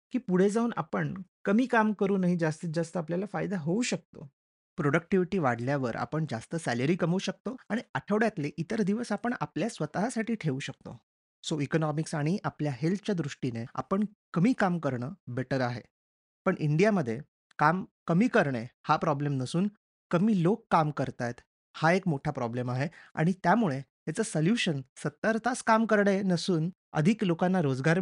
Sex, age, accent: male, 30-49, native